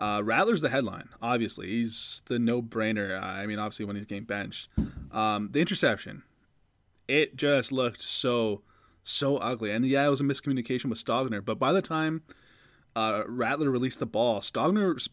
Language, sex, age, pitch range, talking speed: English, male, 20-39, 110-155 Hz, 165 wpm